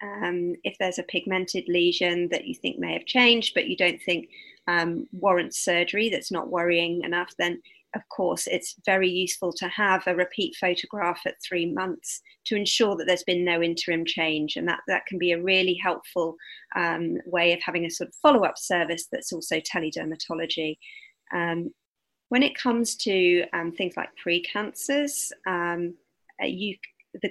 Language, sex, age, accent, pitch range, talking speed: English, female, 30-49, British, 175-220 Hz, 165 wpm